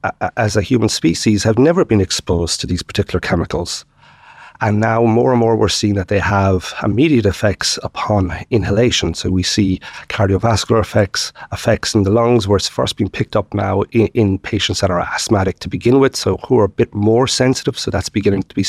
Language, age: English, 40-59